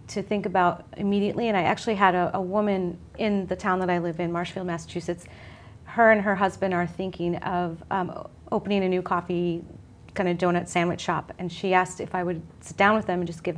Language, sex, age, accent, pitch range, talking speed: English, female, 30-49, American, 175-200 Hz, 220 wpm